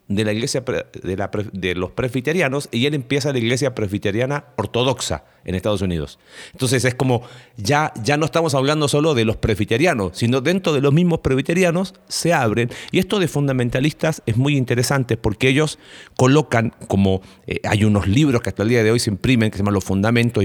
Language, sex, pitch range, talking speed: Spanish, male, 95-135 Hz, 195 wpm